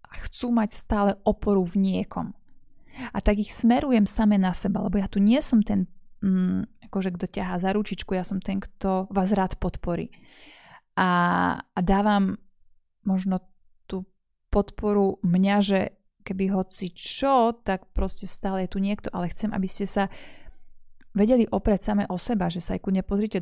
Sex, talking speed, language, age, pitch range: female, 165 wpm, Slovak, 20-39, 185-210 Hz